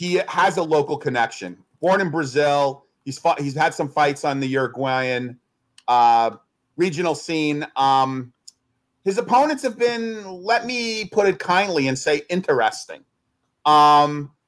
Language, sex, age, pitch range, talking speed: English, male, 40-59, 150-195 Hz, 140 wpm